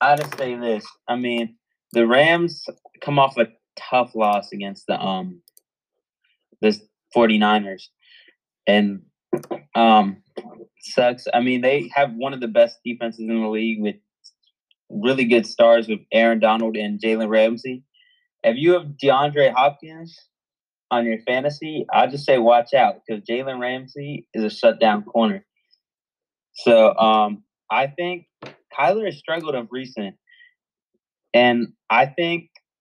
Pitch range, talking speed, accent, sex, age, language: 110-145 Hz, 135 wpm, American, male, 20-39, English